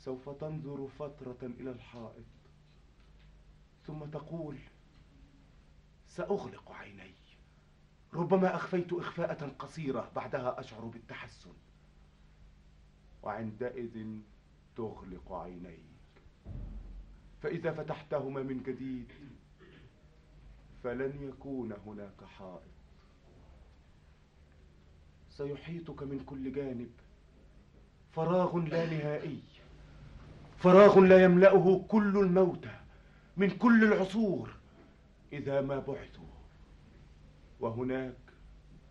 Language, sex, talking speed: Arabic, male, 70 wpm